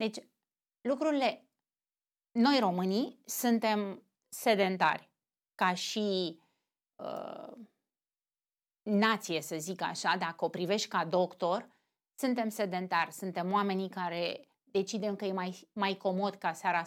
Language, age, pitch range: Romanian, 30-49, 170-230 Hz